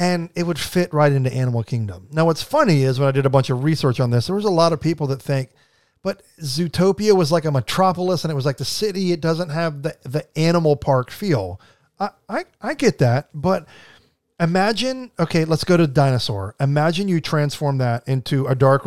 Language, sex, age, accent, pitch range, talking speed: English, male, 40-59, American, 135-175 Hz, 215 wpm